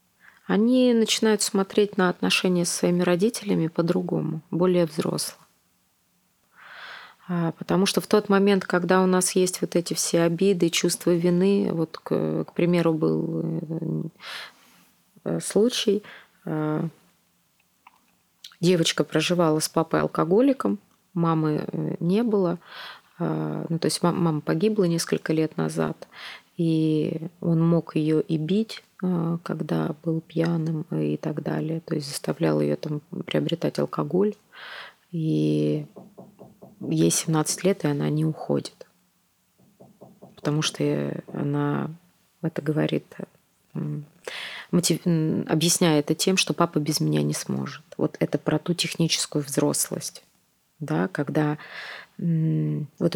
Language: Russian